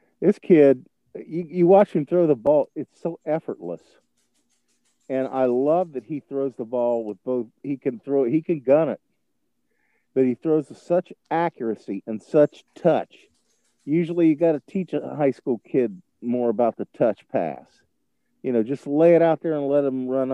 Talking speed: 190 wpm